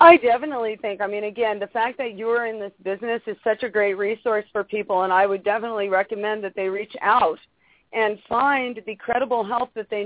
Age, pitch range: 40-59, 195-245 Hz